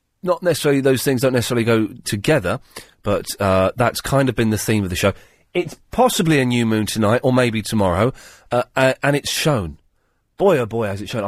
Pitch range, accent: 95-130 Hz, British